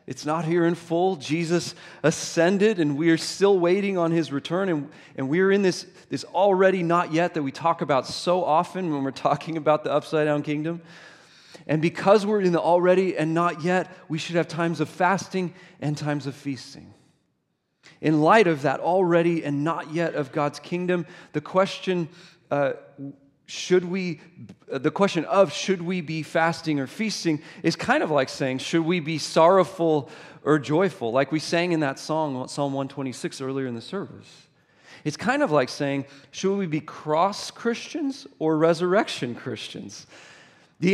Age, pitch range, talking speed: 30-49, 150-180 Hz, 175 wpm